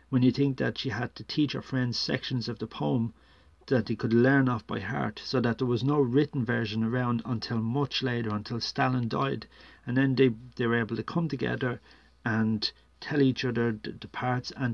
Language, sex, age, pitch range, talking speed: English, male, 40-59, 110-135 Hz, 210 wpm